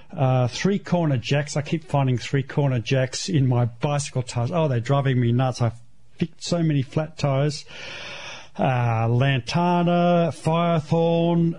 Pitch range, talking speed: 135-175 Hz, 135 wpm